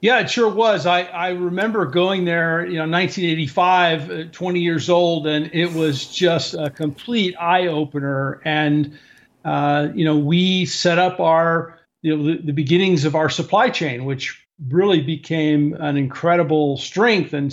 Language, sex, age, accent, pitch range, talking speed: English, male, 50-69, American, 150-185 Hz, 160 wpm